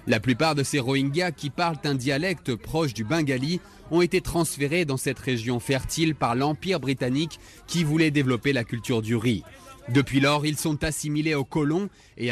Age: 20-39